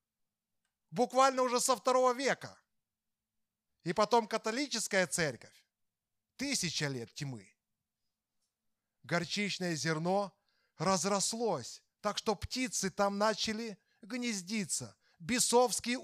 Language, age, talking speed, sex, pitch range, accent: Russian, 30-49, 80 wpm, male, 150-235 Hz, native